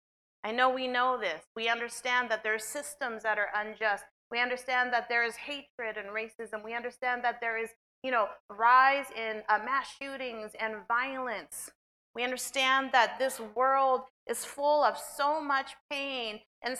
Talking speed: 170 wpm